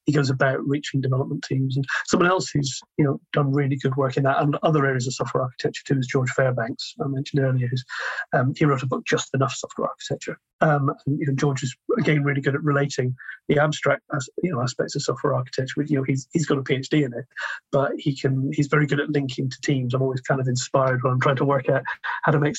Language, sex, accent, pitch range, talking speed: English, male, British, 135-150 Hz, 250 wpm